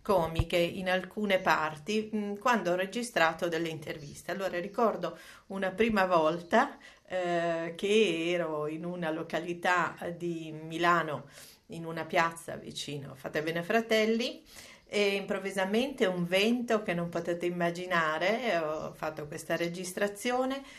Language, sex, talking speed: Italian, female, 120 wpm